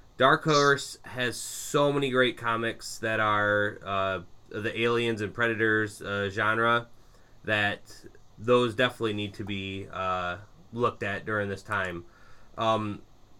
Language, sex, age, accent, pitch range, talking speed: English, male, 20-39, American, 105-120 Hz, 130 wpm